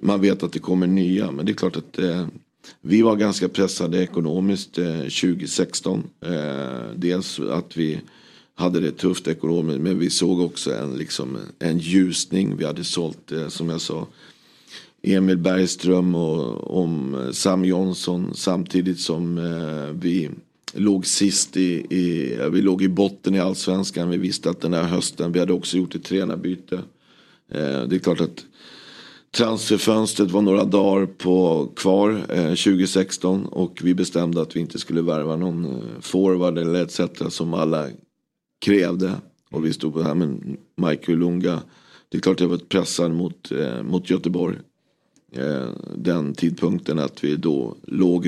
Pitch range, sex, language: 85-95 Hz, male, Swedish